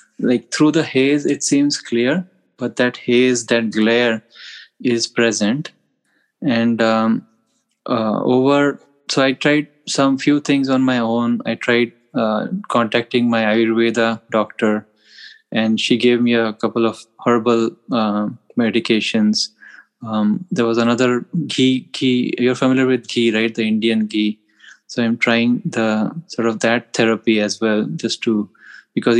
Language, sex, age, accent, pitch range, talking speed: English, male, 20-39, Indian, 110-125 Hz, 145 wpm